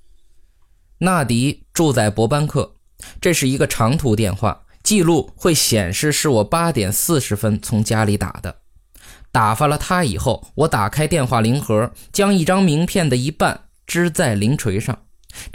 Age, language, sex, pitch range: 20-39, Chinese, male, 105-160 Hz